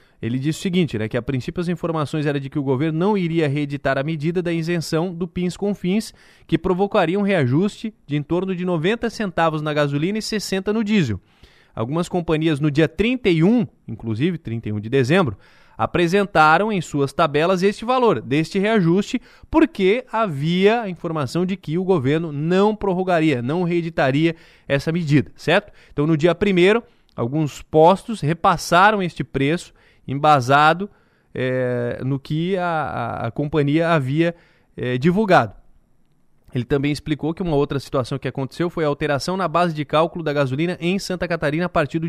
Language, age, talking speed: Portuguese, 20-39, 165 wpm